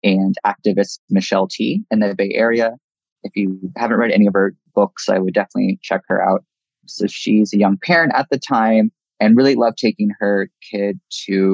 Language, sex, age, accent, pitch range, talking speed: English, male, 20-39, American, 100-110 Hz, 190 wpm